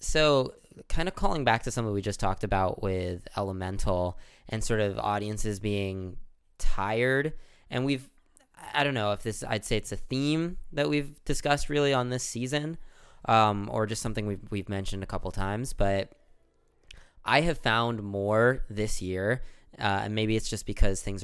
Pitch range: 95-120 Hz